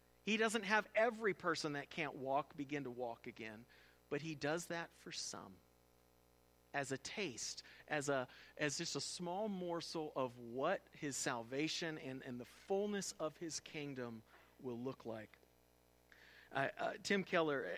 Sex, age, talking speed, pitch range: male, 40-59, 155 wpm, 115-175 Hz